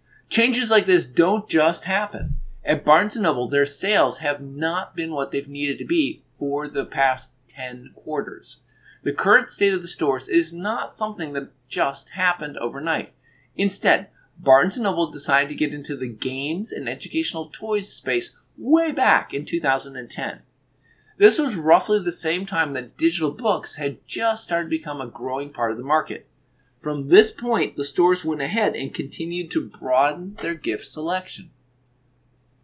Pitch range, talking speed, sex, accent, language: 135-185 Hz, 160 wpm, male, American, English